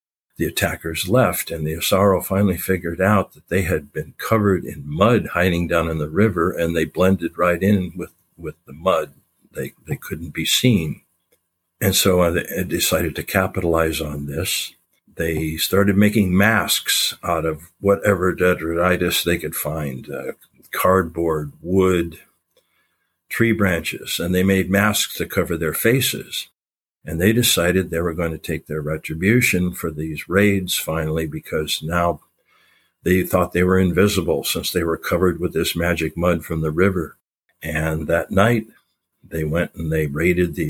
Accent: American